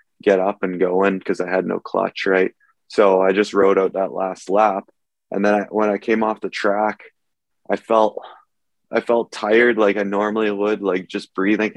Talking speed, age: 200 wpm, 20-39